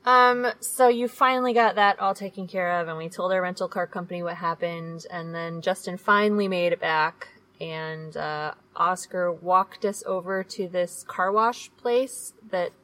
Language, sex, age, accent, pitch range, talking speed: English, female, 20-39, American, 180-225 Hz, 180 wpm